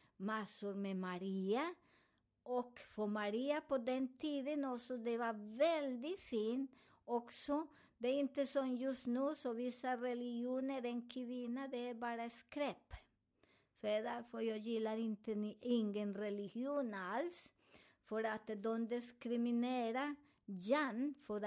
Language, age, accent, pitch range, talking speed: Swedish, 50-69, American, 210-260 Hz, 130 wpm